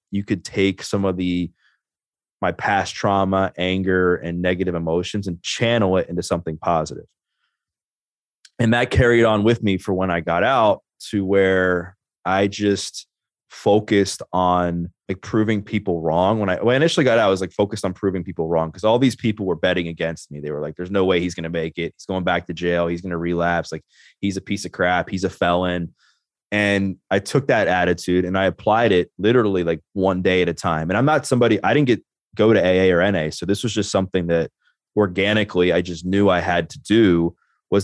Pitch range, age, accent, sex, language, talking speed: 90-105 Hz, 20-39, American, male, English, 210 wpm